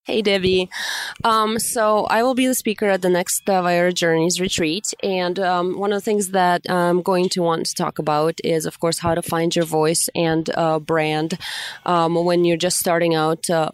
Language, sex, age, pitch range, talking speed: English, female, 20-39, 165-190 Hz, 210 wpm